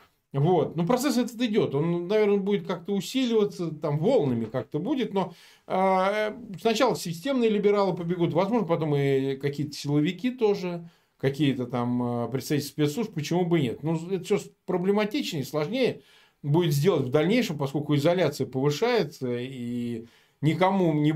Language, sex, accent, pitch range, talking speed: Russian, male, native, 145-205 Hz, 140 wpm